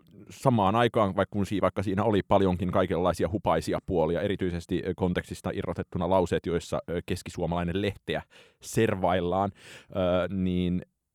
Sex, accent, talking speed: male, native, 95 wpm